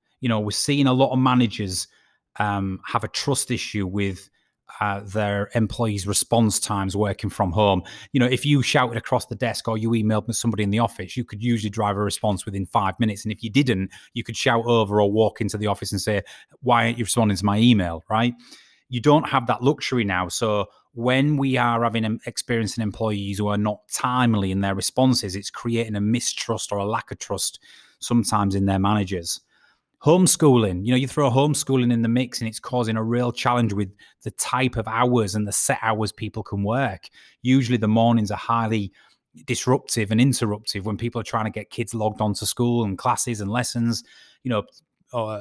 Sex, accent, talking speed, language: male, British, 205 wpm, English